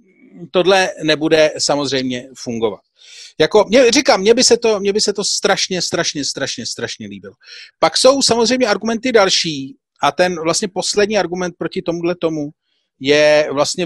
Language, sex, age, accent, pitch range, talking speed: Czech, male, 40-59, native, 145-205 Hz, 150 wpm